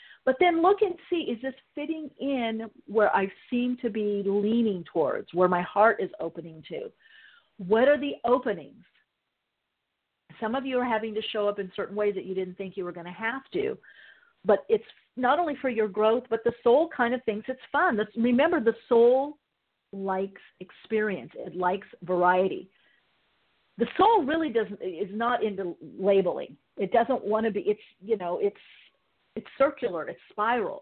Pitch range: 190-255 Hz